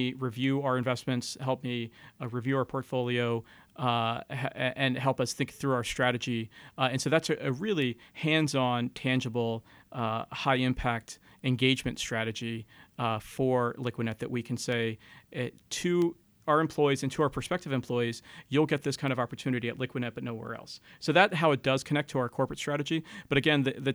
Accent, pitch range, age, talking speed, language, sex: American, 120-140 Hz, 40-59, 180 wpm, English, male